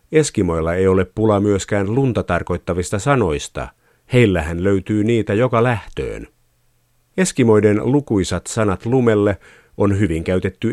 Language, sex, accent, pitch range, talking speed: Finnish, male, native, 90-115 Hz, 110 wpm